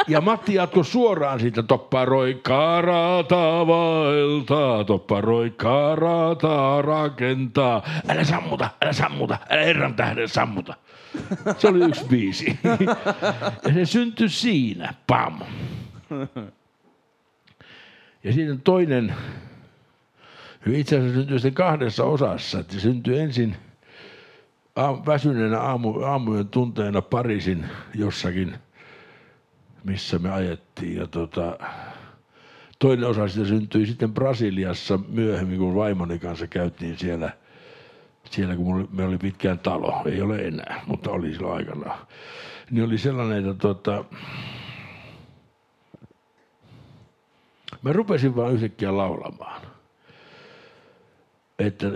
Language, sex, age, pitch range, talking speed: Finnish, male, 60-79, 100-145 Hz, 100 wpm